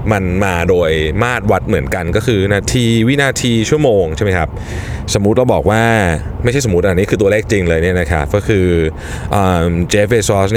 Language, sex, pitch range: Thai, male, 90-125 Hz